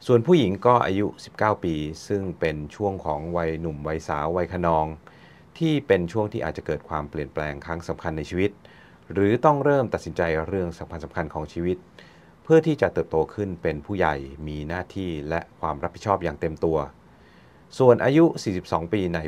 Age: 30-49